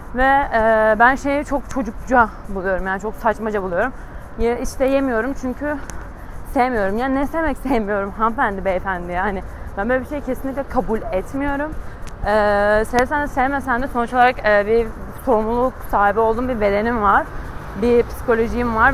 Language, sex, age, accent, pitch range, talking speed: Turkish, female, 30-49, native, 215-275 Hz, 145 wpm